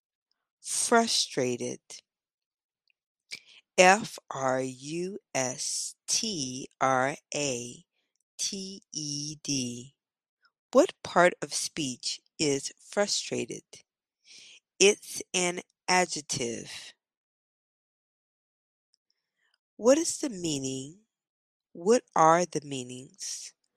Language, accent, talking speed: English, American, 50 wpm